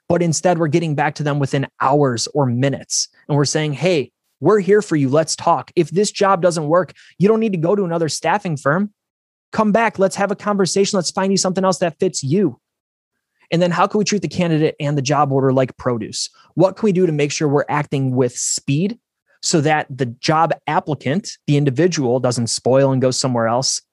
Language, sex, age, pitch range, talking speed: English, male, 20-39, 135-175 Hz, 220 wpm